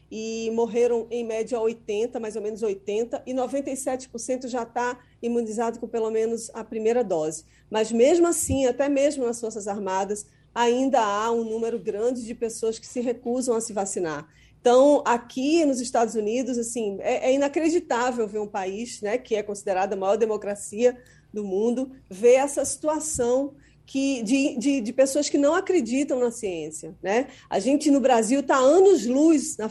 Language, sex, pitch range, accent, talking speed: Portuguese, female, 225-275 Hz, Brazilian, 165 wpm